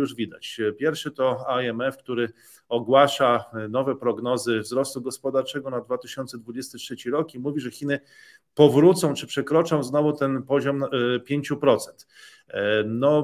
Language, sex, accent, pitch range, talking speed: Polish, male, native, 125-150 Hz, 120 wpm